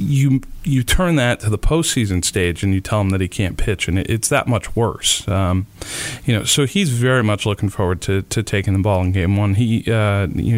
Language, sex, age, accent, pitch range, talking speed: English, male, 40-59, American, 100-120 Hz, 235 wpm